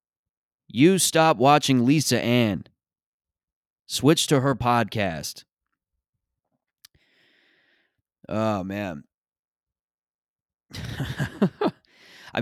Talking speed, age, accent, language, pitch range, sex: 60 wpm, 20-39, American, English, 95-120 Hz, male